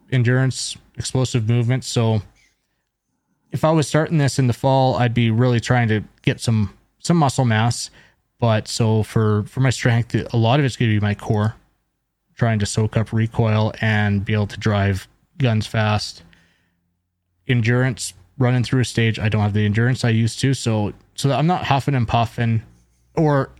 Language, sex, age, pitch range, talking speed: English, male, 20-39, 105-130 Hz, 180 wpm